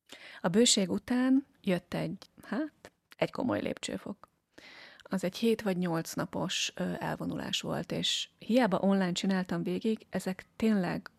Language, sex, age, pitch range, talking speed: Hungarian, female, 30-49, 180-210 Hz, 130 wpm